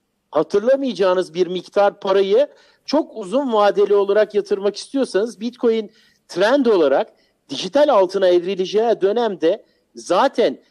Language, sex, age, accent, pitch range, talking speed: Turkish, male, 50-69, native, 195-280 Hz, 100 wpm